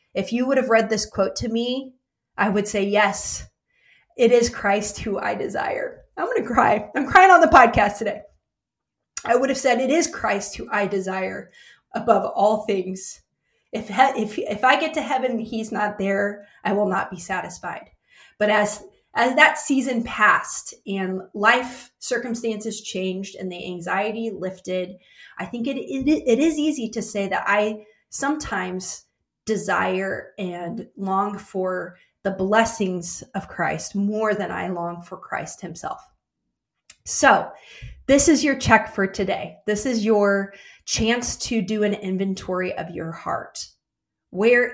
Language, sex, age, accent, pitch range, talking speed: English, female, 20-39, American, 195-250 Hz, 160 wpm